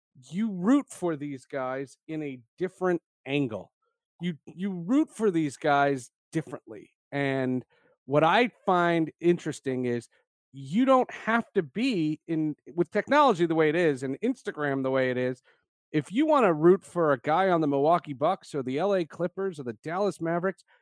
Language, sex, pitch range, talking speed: English, male, 145-210 Hz, 175 wpm